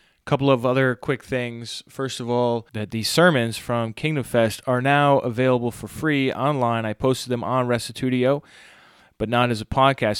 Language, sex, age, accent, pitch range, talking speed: English, male, 30-49, American, 115-135 Hz, 175 wpm